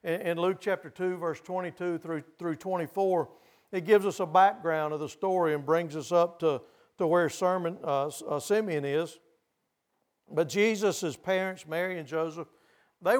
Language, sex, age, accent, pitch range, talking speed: English, male, 50-69, American, 165-205 Hz, 160 wpm